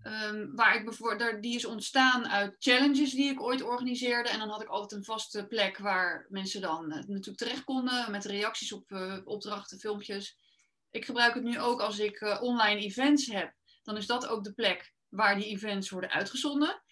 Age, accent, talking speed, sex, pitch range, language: 20-39, Dutch, 200 wpm, female, 210-260 Hz, Dutch